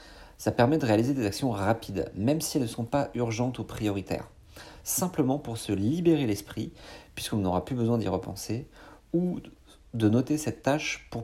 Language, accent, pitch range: French, French, 105-140 Hz